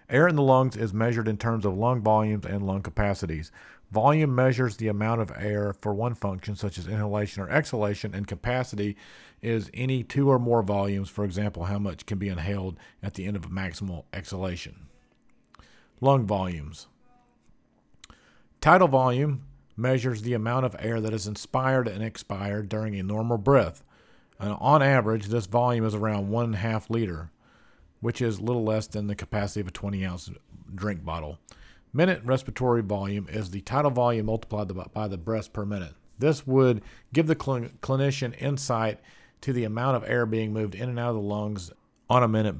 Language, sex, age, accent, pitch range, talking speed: English, male, 50-69, American, 100-125 Hz, 175 wpm